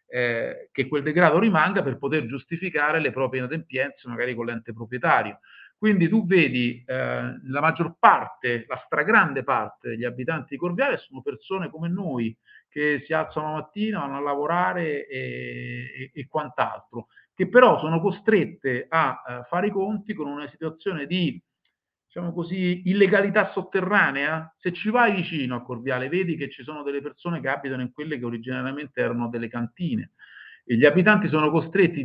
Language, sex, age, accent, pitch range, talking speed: Italian, male, 50-69, native, 130-180 Hz, 165 wpm